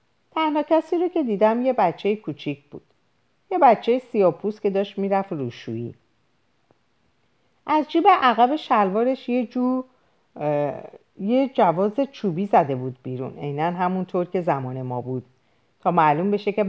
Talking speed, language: 140 wpm, Persian